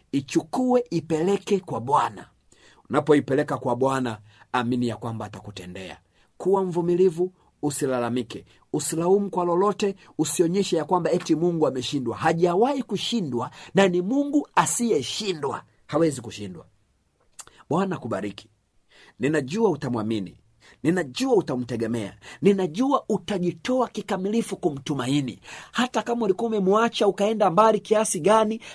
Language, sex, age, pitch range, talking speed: Swahili, male, 50-69, 130-210 Hz, 100 wpm